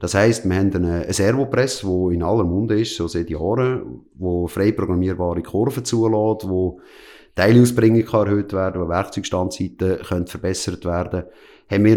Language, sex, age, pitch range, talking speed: German, male, 30-49, 95-115 Hz, 160 wpm